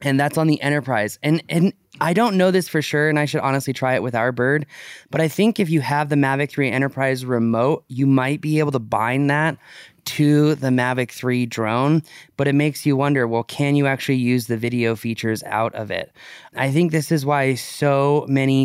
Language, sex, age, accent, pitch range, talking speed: English, male, 20-39, American, 125-150 Hz, 220 wpm